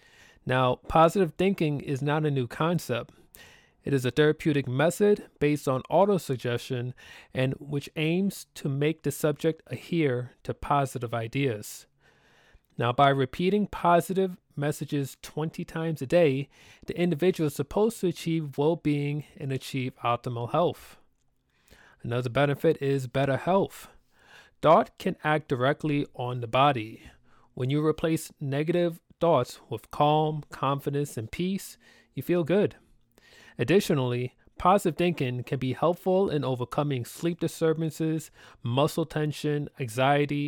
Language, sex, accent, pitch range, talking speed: English, male, American, 130-165 Hz, 125 wpm